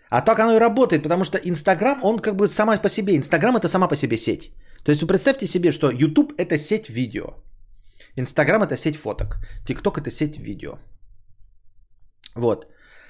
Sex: male